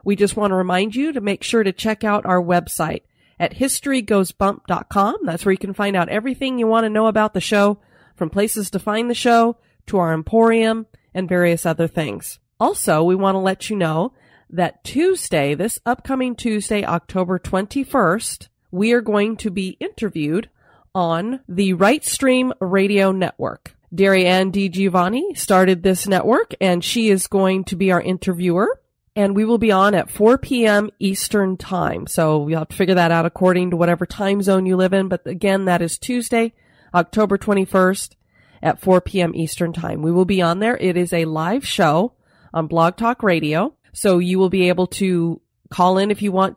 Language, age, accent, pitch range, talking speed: English, 30-49, American, 180-215 Hz, 185 wpm